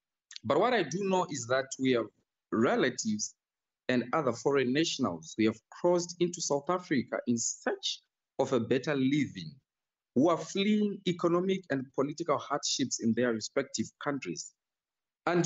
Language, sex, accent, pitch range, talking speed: English, male, South African, 130-185 Hz, 150 wpm